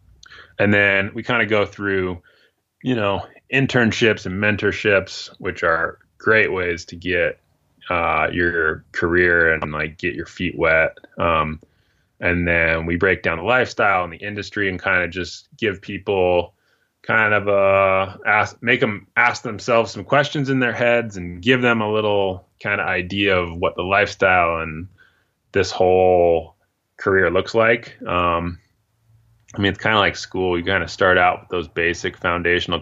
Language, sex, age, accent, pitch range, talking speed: English, male, 20-39, American, 90-110 Hz, 170 wpm